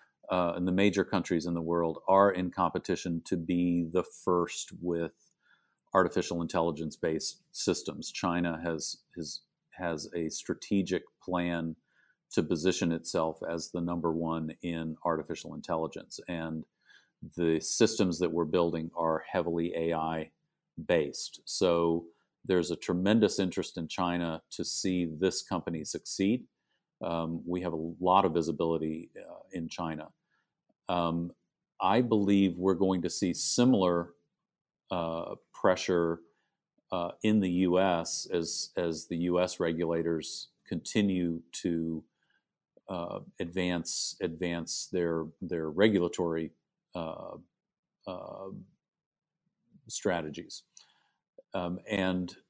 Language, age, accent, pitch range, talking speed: English, 40-59, American, 85-90 Hz, 110 wpm